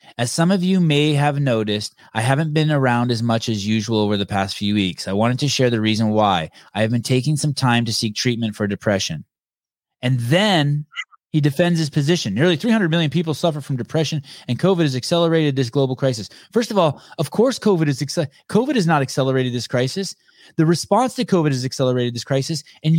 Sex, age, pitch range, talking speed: male, 20-39, 125-180 Hz, 210 wpm